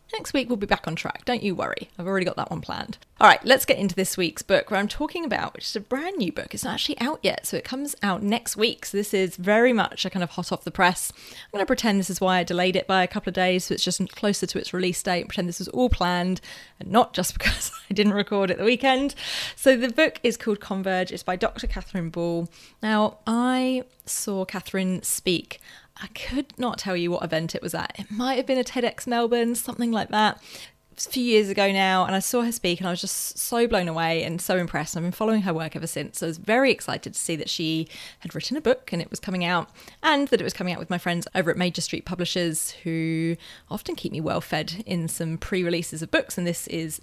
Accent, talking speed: British, 260 wpm